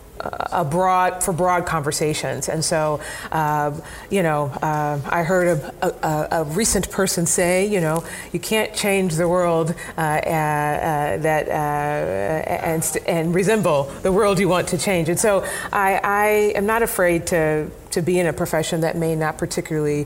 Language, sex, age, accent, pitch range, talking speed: English, female, 30-49, American, 150-180 Hz, 170 wpm